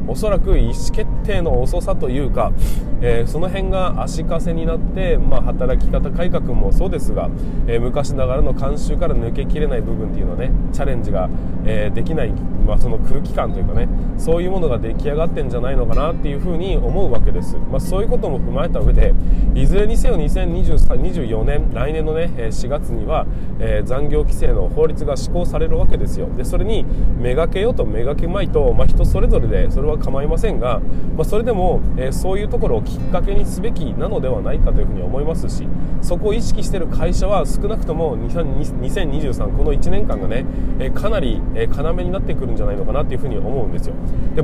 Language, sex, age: Japanese, male, 20-39